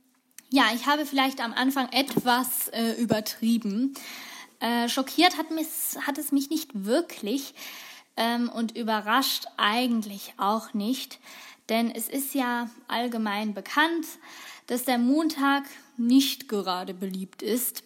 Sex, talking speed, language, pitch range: female, 120 wpm, German, 220-275 Hz